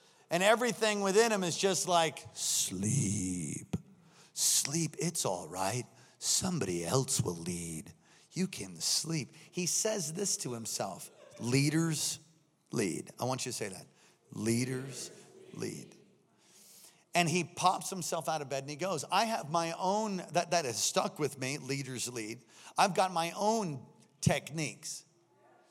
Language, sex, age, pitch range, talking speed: English, male, 40-59, 150-195 Hz, 140 wpm